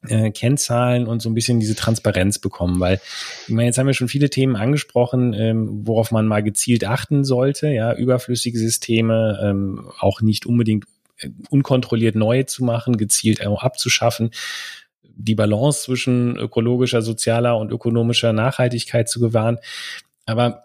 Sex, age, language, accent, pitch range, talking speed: male, 30-49, German, German, 110-130 Hz, 150 wpm